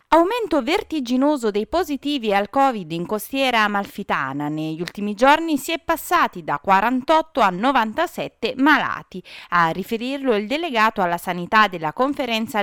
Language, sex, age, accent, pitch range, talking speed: Italian, female, 30-49, native, 190-265 Hz, 135 wpm